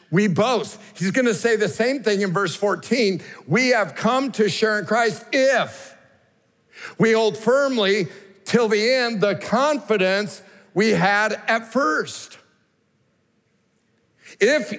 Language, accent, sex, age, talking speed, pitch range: English, American, male, 50-69, 135 wpm, 165-220 Hz